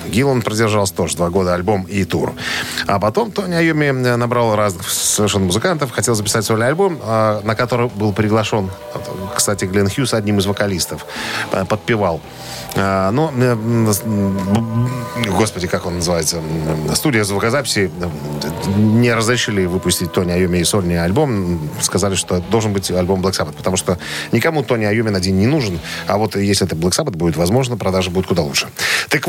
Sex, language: male, Russian